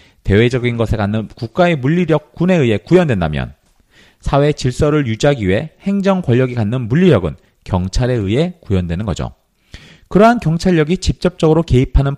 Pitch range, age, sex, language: 105-165 Hz, 40-59, male, Korean